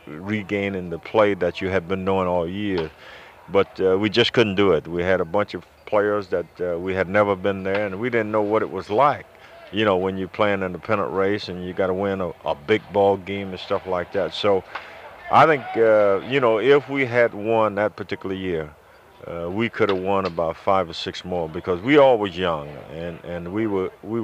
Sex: male